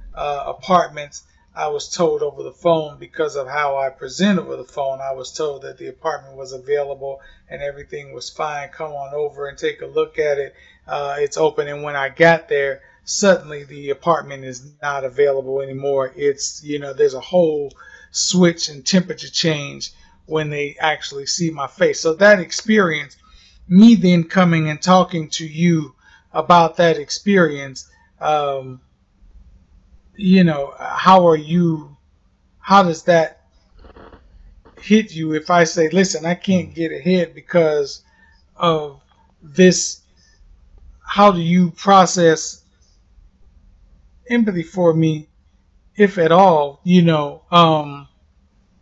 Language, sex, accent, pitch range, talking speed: English, male, American, 140-180 Hz, 140 wpm